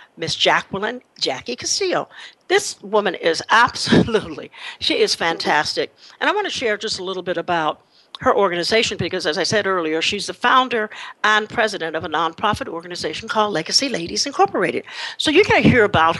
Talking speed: 175 wpm